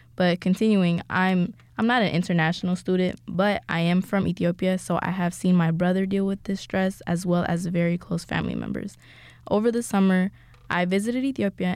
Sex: female